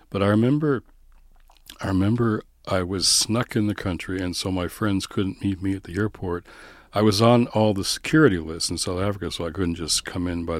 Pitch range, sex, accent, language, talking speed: 85-105 Hz, male, American, English, 215 wpm